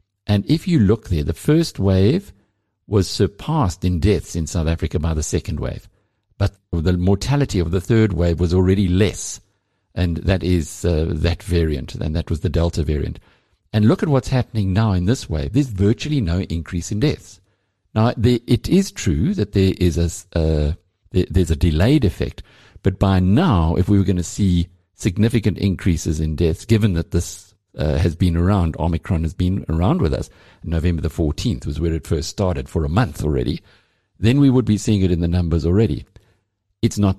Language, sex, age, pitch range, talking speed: English, male, 60-79, 85-105 Hz, 185 wpm